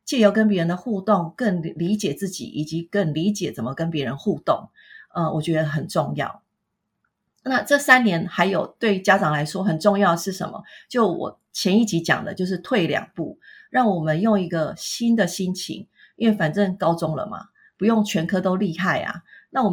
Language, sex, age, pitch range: Chinese, female, 30-49, 165-205 Hz